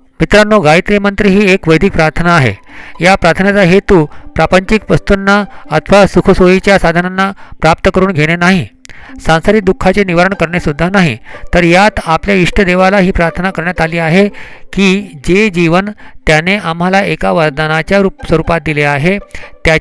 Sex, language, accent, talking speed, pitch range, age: male, Hindi, native, 105 wpm, 160-195 Hz, 50-69